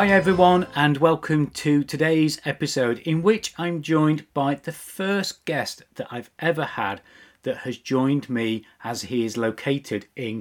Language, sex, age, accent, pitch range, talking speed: English, male, 30-49, British, 120-160 Hz, 160 wpm